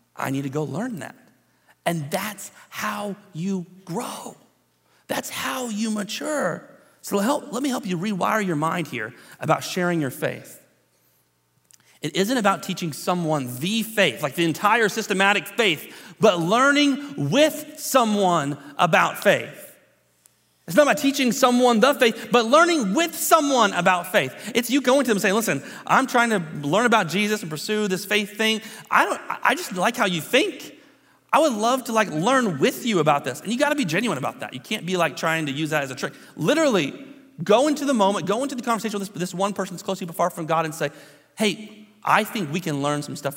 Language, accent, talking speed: English, American, 200 wpm